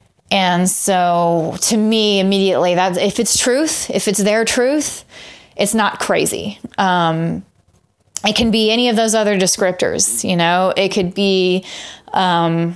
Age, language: 30-49, English